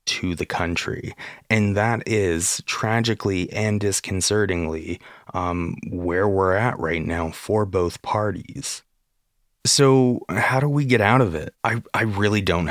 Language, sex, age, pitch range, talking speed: English, male, 20-39, 90-115 Hz, 140 wpm